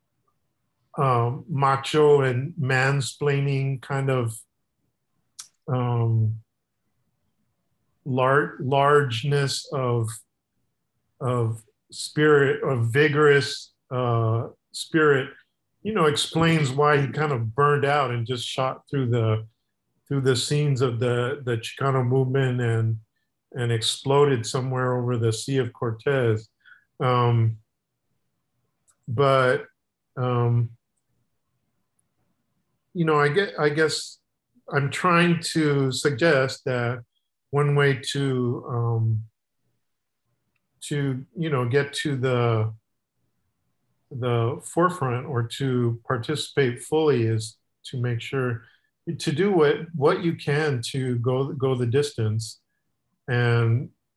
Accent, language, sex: American, English, male